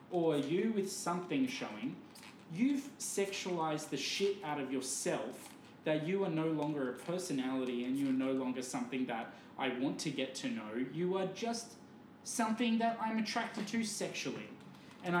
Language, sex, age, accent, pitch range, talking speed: English, male, 20-39, Australian, 140-200 Hz, 165 wpm